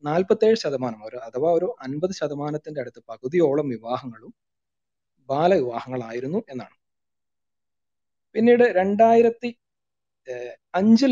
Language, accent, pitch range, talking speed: Malayalam, native, 130-185 Hz, 65 wpm